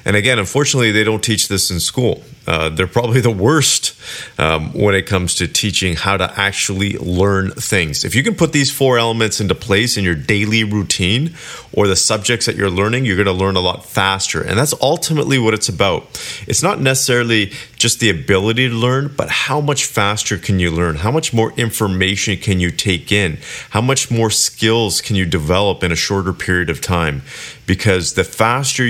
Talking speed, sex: 200 wpm, male